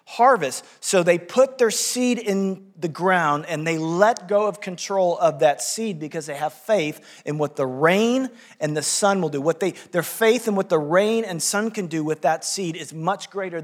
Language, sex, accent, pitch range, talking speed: English, male, American, 175-225 Hz, 215 wpm